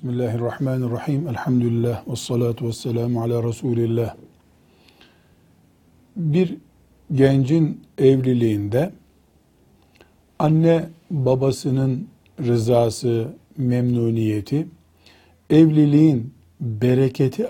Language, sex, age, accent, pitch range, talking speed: Turkish, male, 50-69, native, 120-155 Hz, 55 wpm